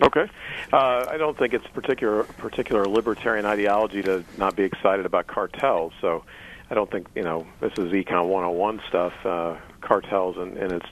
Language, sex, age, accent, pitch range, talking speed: English, male, 50-69, American, 90-100 Hz, 175 wpm